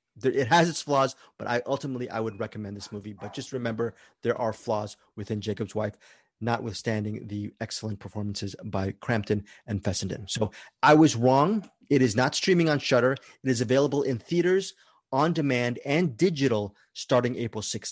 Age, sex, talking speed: 30-49, male, 165 wpm